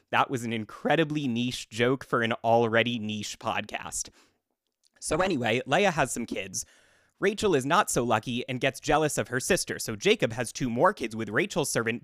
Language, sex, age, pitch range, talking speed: English, male, 20-39, 110-155 Hz, 185 wpm